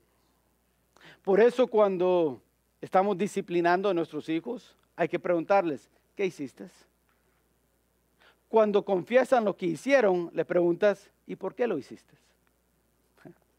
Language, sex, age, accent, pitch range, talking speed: English, male, 50-69, Mexican, 155-215 Hz, 110 wpm